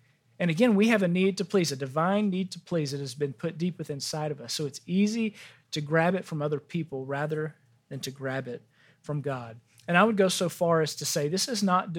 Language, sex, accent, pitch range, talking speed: English, male, American, 140-215 Hz, 245 wpm